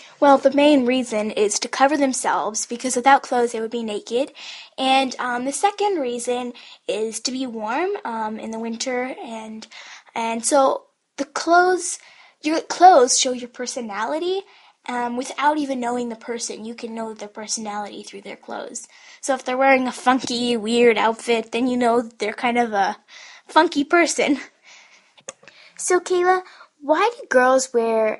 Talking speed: 160 wpm